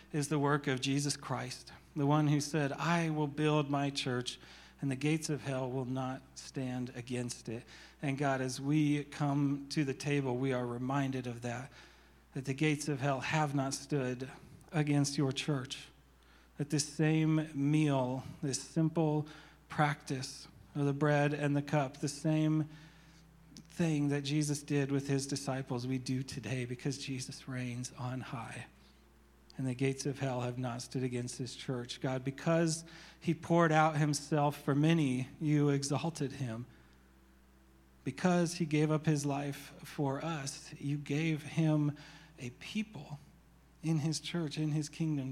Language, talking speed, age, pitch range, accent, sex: English, 160 wpm, 40-59, 130-150 Hz, American, male